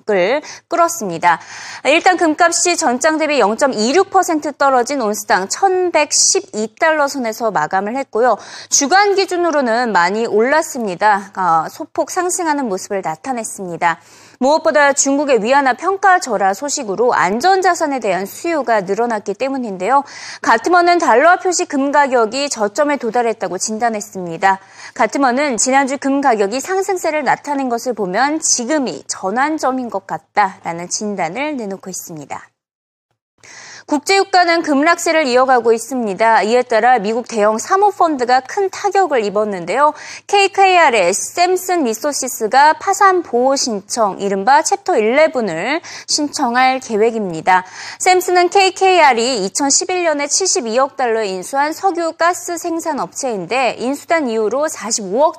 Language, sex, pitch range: Korean, female, 215-330 Hz